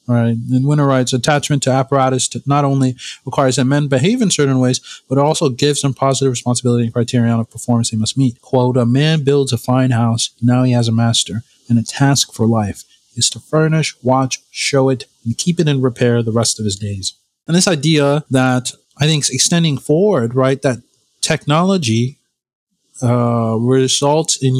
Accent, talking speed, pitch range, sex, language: American, 185 wpm, 125-150 Hz, male, English